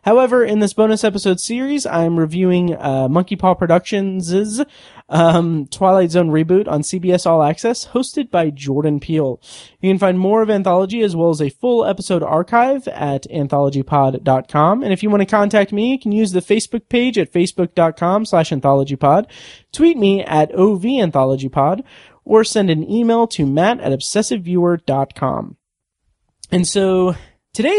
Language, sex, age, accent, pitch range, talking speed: English, male, 30-49, American, 150-205 Hz, 155 wpm